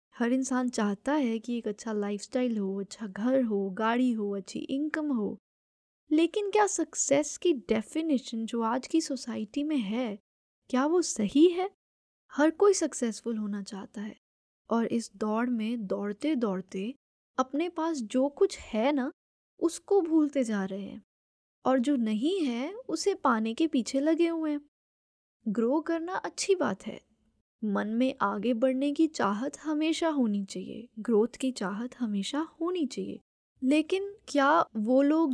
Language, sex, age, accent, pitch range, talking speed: Hindi, female, 10-29, native, 225-310 Hz, 155 wpm